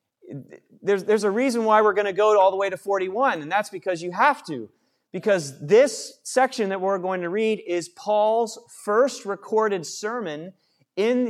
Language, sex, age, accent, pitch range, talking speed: English, male, 30-49, American, 135-205 Hz, 180 wpm